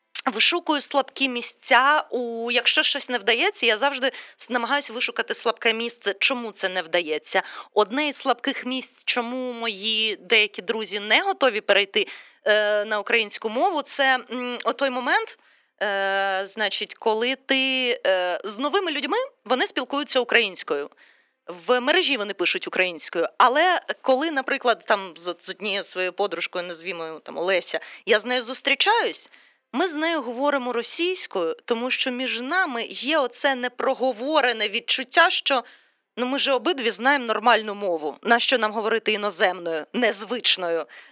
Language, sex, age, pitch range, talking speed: Ukrainian, female, 20-39, 215-275 Hz, 130 wpm